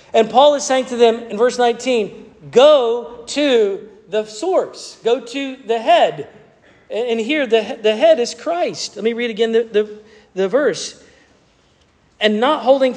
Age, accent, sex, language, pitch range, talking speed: 40-59, American, male, English, 200-245 Hz, 155 wpm